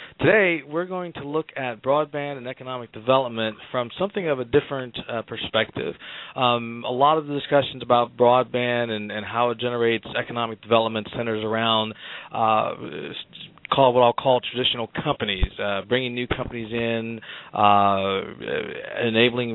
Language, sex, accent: English, male, American